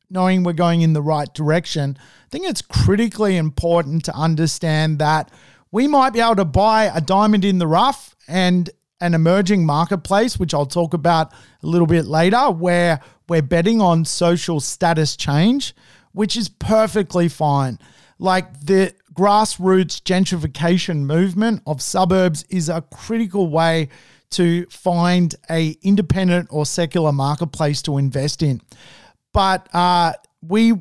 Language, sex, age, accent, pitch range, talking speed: English, male, 40-59, Australian, 155-190 Hz, 140 wpm